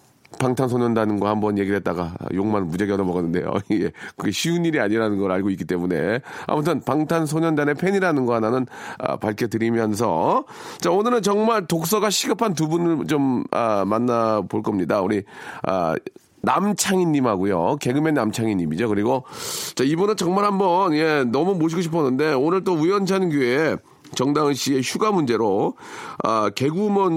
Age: 40-59